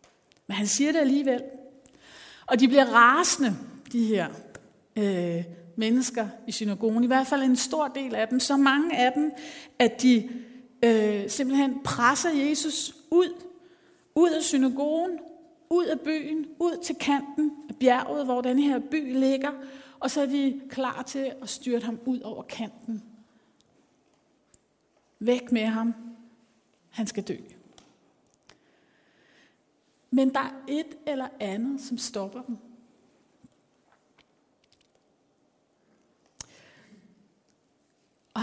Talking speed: 125 wpm